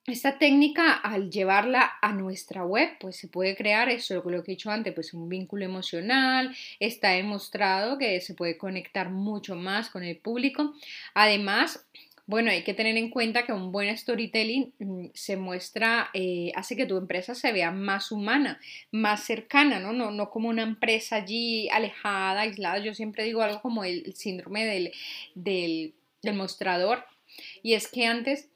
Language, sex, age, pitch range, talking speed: Spanish, female, 20-39, 190-240 Hz, 170 wpm